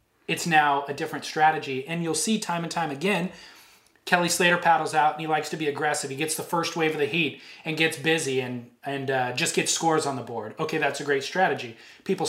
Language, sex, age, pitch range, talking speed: English, male, 30-49, 140-170 Hz, 235 wpm